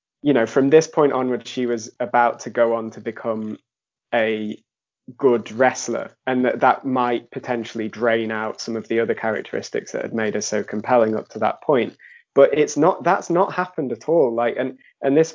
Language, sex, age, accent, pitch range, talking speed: English, male, 20-39, British, 115-145 Hz, 200 wpm